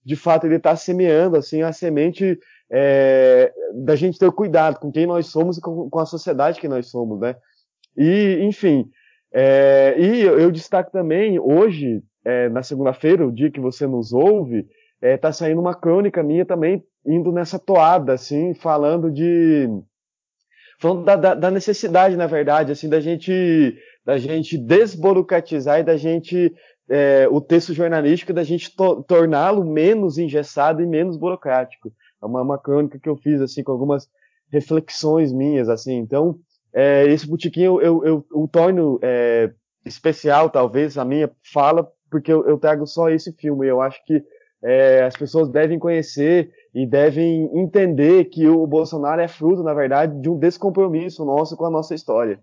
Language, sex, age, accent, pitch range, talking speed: Portuguese, male, 20-39, Brazilian, 145-175 Hz, 165 wpm